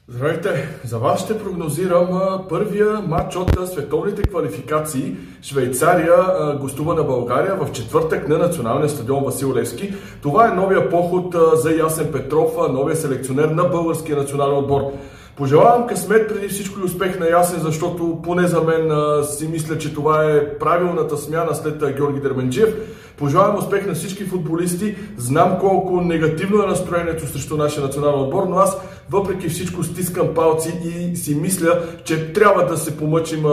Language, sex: Bulgarian, male